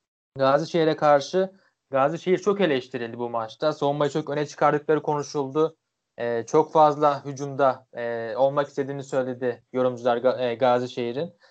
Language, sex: Turkish, male